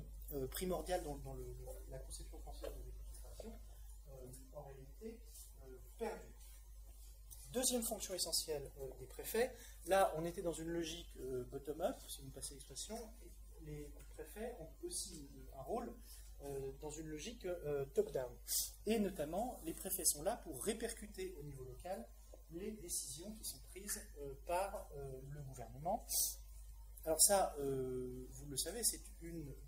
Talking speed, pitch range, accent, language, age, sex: 155 wpm, 130-180 Hz, French, English, 30-49, male